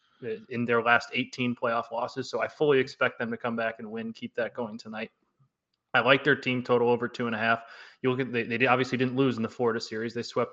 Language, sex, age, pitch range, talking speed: English, male, 20-39, 115-125 Hz, 250 wpm